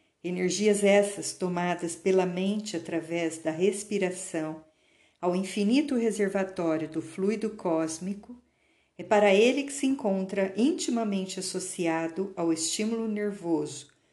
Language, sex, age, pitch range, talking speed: Portuguese, female, 50-69, 165-220 Hz, 105 wpm